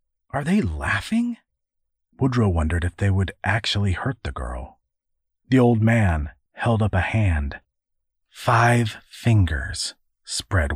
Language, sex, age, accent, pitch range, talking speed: English, male, 40-59, American, 80-115 Hz, 125 wpm